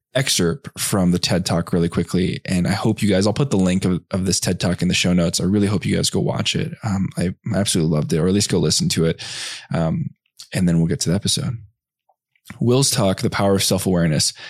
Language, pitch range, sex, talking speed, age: English, 95-115 Hz, male, 240 wpm, 20-39